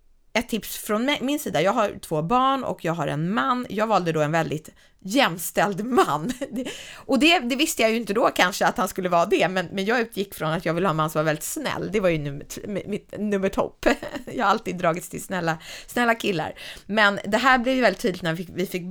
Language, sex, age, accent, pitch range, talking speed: Swedish, female, 20-39, native, 160-225 Hz, 240 wpm